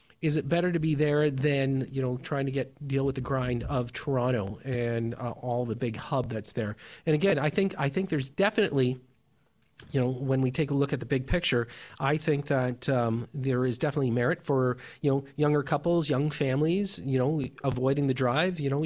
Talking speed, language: 215 wpm, English